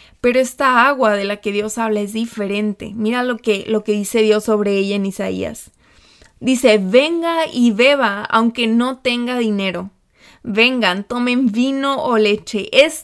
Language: Spanish